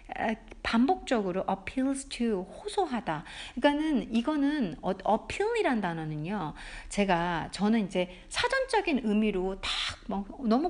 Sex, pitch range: female, 185-300 Hz